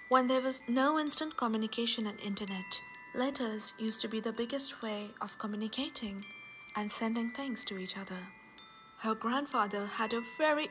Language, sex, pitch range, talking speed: English, female, 200-255 Hz, 155 wpm